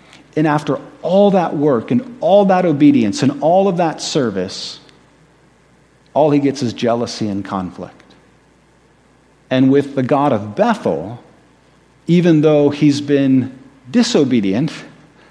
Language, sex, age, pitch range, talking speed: English, male, 50-69, 130-170 Hz, 125 wpm